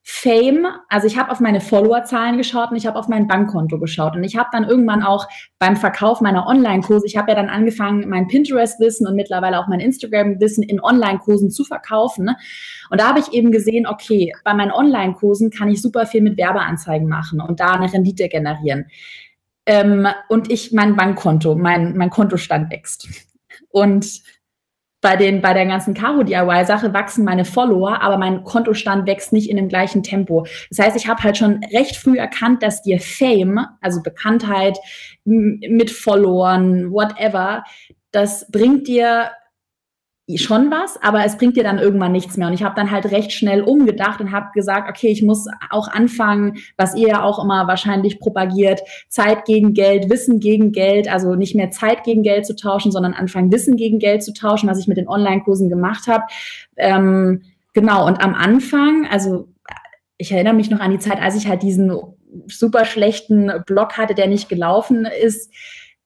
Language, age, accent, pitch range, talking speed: German, 20-39, German, 190-225 Hz, 180 wpm